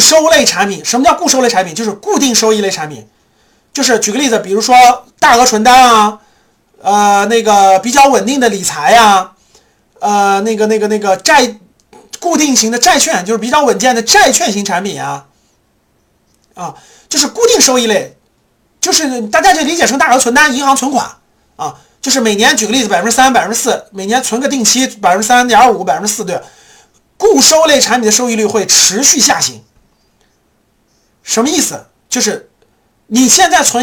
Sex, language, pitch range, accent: male, Chinese, 215-270 Hz, native